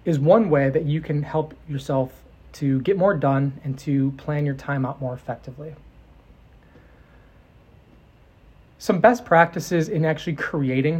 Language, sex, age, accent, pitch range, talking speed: English, male, 30-49, American, 140-170 Hz, 140 wpm